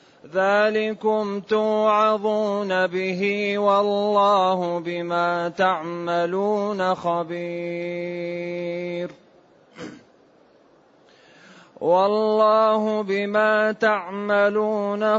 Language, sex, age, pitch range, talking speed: Arabic, male, 30-49, 190-215 Hz, 40 wpm